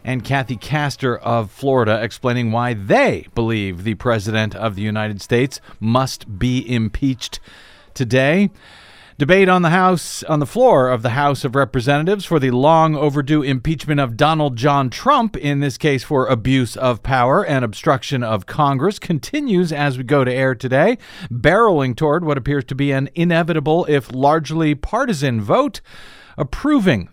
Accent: American